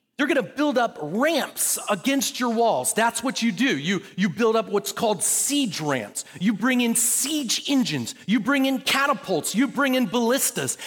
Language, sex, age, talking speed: English, male, 40-59, 190 wpm